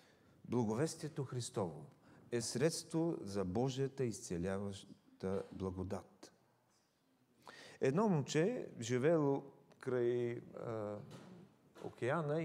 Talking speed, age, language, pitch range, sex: 65 wpm, 40-59, English, 120-175 Hz, male